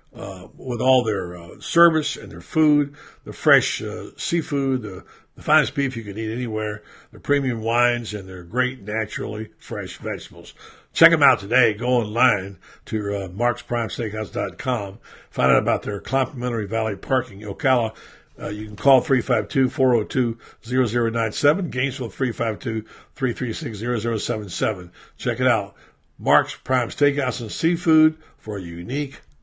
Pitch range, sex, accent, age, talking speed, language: 105-130 Hz, male, American, 60-79, 135 wpm, English